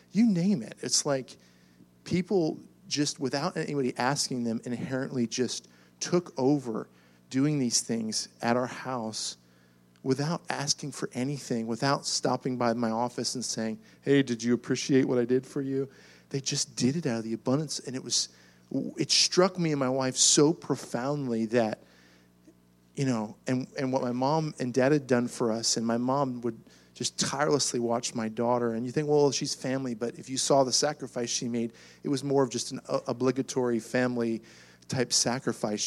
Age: 40-59